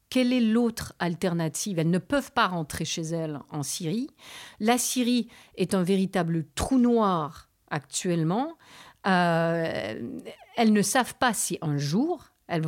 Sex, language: female, French